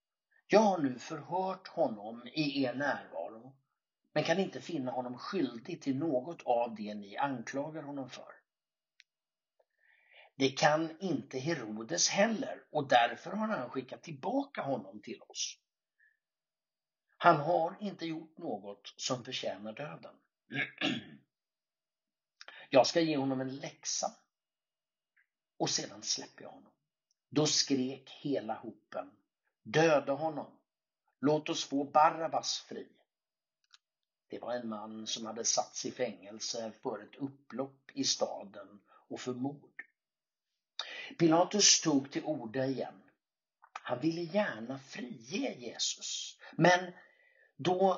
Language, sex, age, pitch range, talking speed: Swedish, male, 60-79, 125-170 Hz, 120 wpm